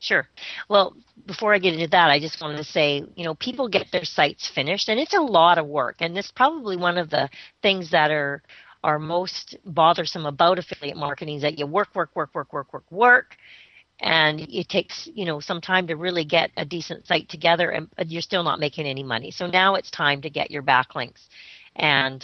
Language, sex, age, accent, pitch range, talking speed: English, female, 40-59, American, 145-185 Hz, 215 wpm